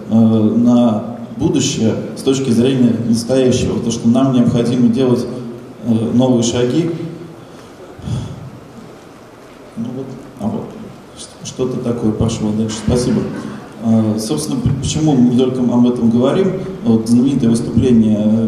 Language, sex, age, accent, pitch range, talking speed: Russian, male, 20-39, native, 115-125 Hz, 110 wpm